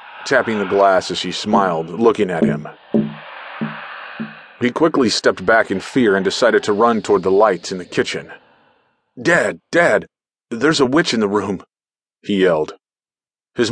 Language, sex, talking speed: English, male, 160 wpm